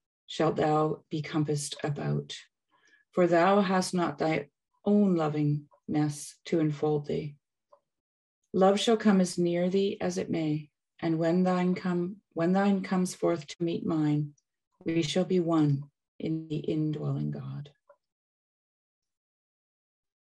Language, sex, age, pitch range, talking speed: English, female, 40-59, 145-175 Hz, 125 wpm